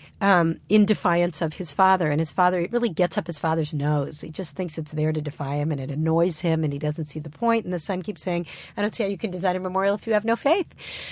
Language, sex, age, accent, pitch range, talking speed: English, female, 50-69, American, 165-215 Hz, 285 wpm